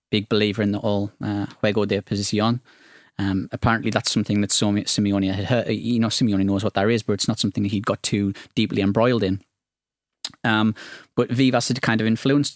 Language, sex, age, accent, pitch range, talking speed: English, male, 20-39, British, 100-115 Hz, 200 wpm